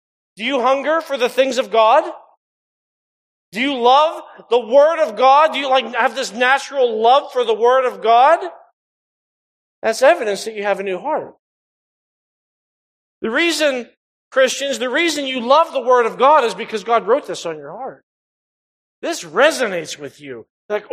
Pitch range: 210-270 Hz